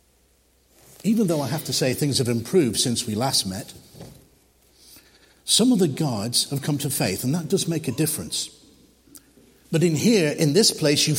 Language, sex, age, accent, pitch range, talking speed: English, male, 60-79, British, 125-175 Hz, 180 wpm